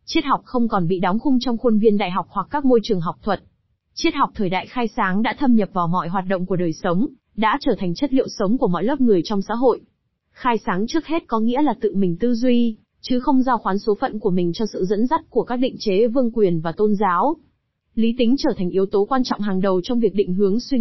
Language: Vietnamese